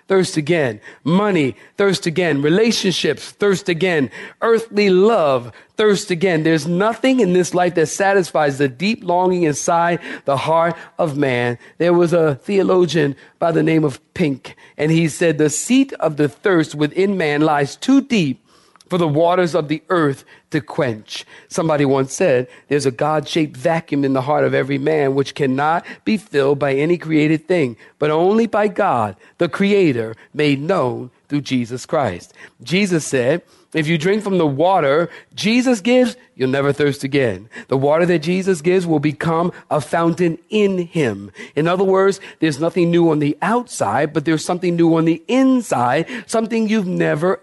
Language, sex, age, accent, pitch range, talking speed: English, male, 40-59, American, 150-200 Hz, 170 wpm